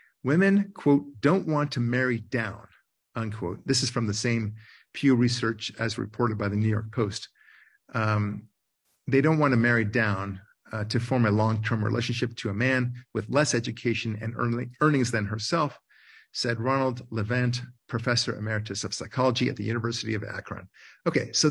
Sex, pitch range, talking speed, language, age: male, 110-130 Hz, 165 wpm, English, 50-69